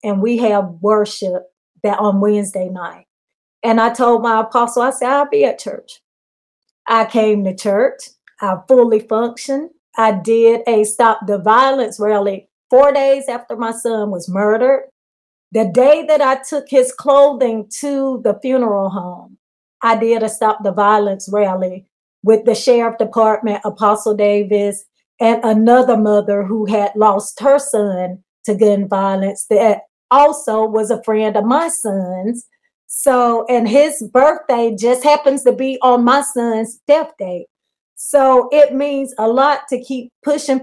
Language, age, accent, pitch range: English, 30-49, American, 210-260 Hz